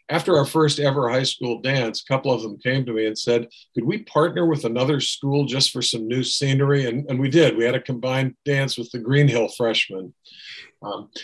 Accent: American